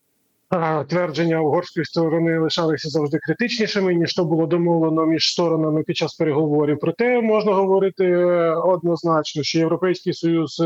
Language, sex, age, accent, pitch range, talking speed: Ukrainian, male, 20-39, native, 145-170 Hz, 125 wpm